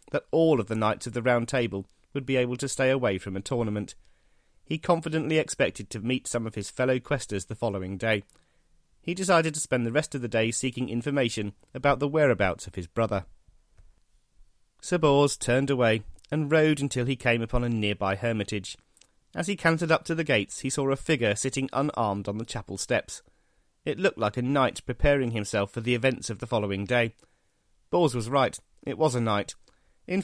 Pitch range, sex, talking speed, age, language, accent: 110-150 Hz, male, 200 wpm, 40-59, English, British